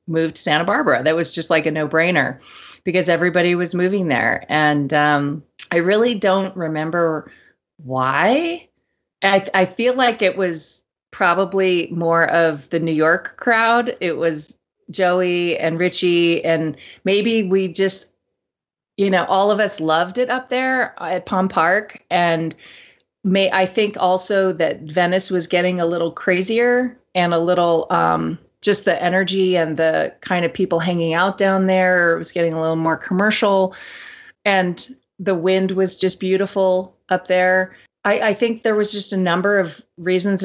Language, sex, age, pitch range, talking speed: English, female, 30-49, 170-200 Hz, 165 wpm